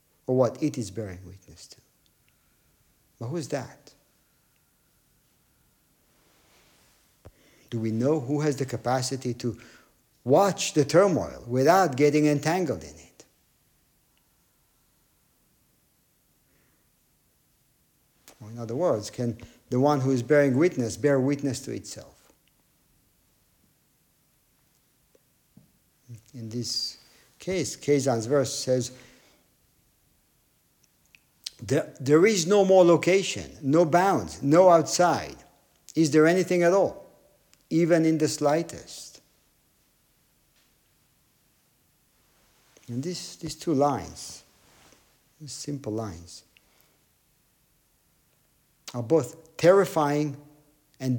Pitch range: 120-155 Hz